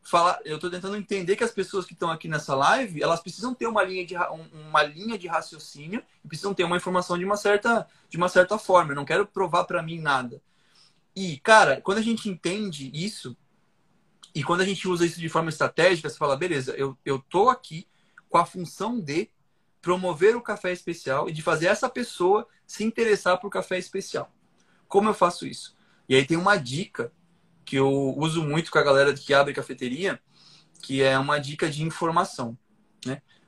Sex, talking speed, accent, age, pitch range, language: male, 195 wpm, Brazilian, 20-39, 155-195 Hz, Portuguese